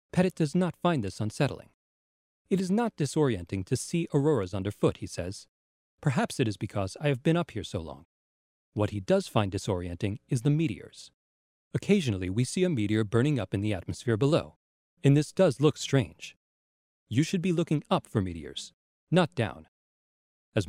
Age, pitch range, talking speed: 40-59, 90-150 Hz, 175 wpm